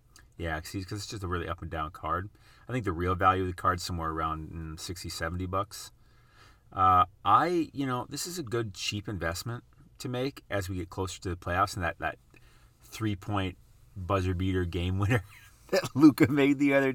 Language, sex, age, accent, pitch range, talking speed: English, male, 30-49, American, 90-120 Hz, 190 wpm